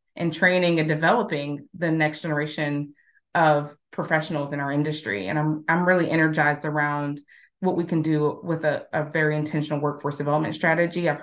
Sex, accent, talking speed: female, American, 165 wpm